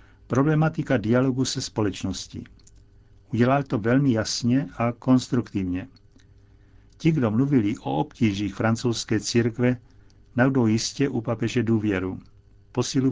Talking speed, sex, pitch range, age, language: 105 wpm, male, 100-130 Hz, 60-79, Czech